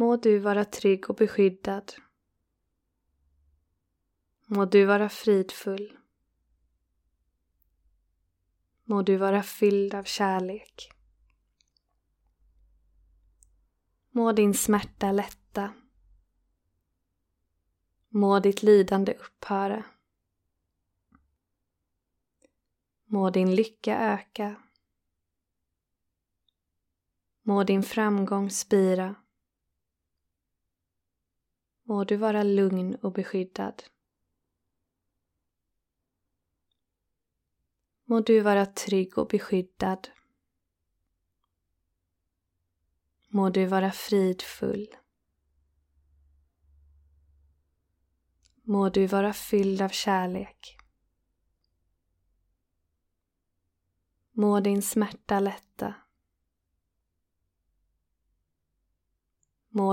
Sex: female